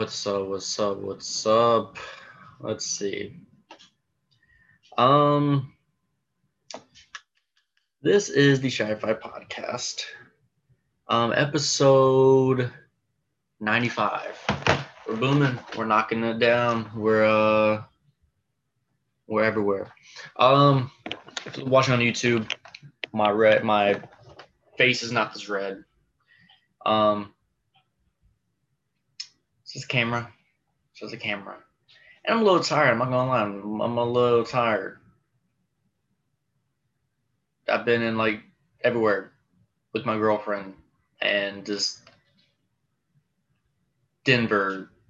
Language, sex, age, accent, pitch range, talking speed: English, male, 20-39, American, 110-140 Hz, 95 wpm